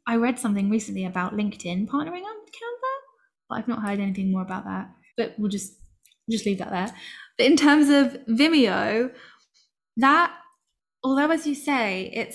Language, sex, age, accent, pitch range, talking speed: English, female, 10-29, British, 195-235 Hz, 170 wpm